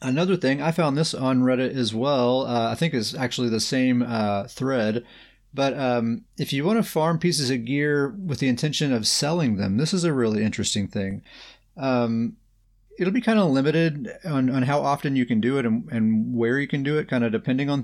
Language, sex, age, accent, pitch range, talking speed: English, male, 30-49, American, 110-145 Hz, 220 wpm